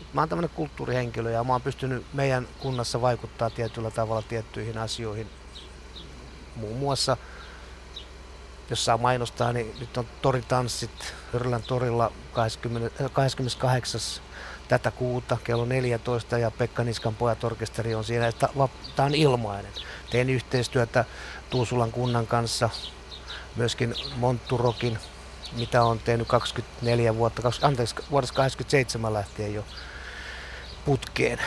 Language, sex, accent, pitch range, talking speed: Finnish, male, native, 110-130 Hz, 105 wpm